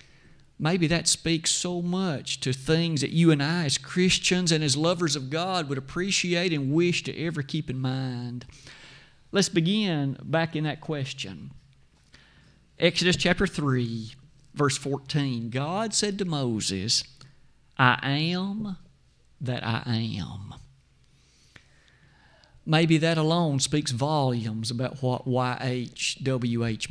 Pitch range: 130-175 Hz